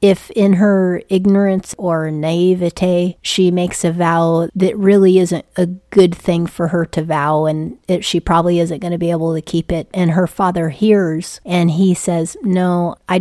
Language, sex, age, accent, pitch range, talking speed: English, female, 30-49, American, 165-185 Hz, 180 wpm